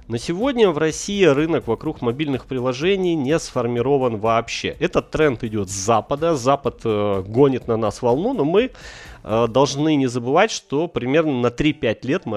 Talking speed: 155 wpm